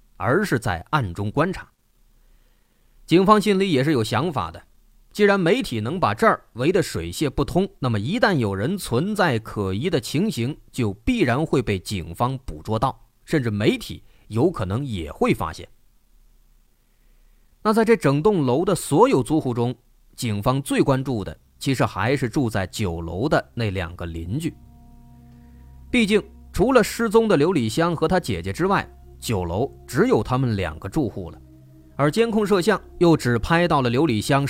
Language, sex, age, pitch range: Chinese, male, 30-49, 95-150 Hz